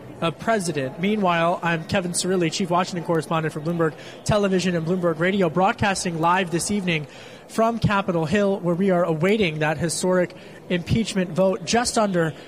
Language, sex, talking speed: English, male, 155 wpm